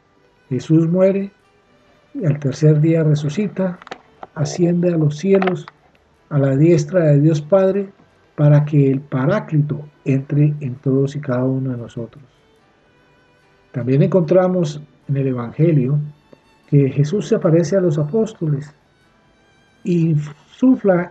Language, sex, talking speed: Spanish, male, 120 wpm